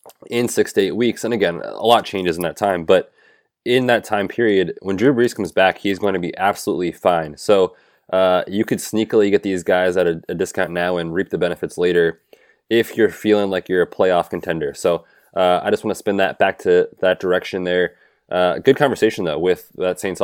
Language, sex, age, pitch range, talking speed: English, male, 20-39, 95-130 Hz, 220 wpm